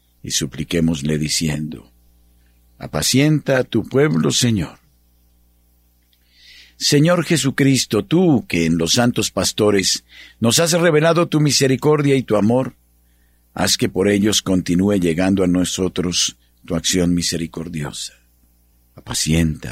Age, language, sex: 50-69, Spanish, male